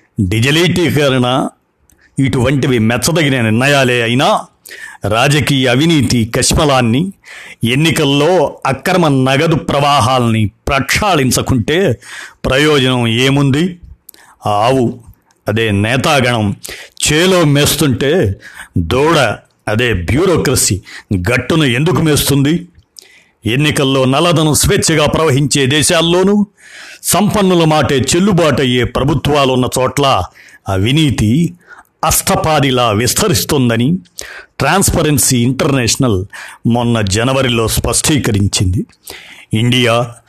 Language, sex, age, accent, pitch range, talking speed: Telugu, male, 50-69, native, 120-150 Hz, 65 wpm